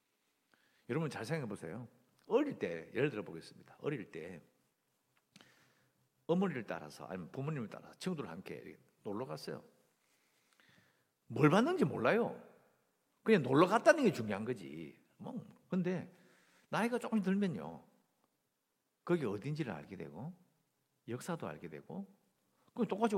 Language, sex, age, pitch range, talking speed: English, male, 60-79, 155-240 Hz, 110 wpm